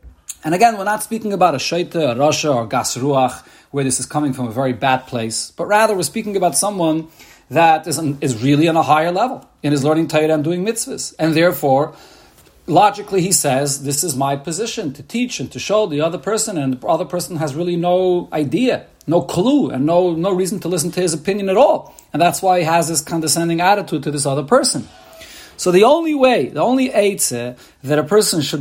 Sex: male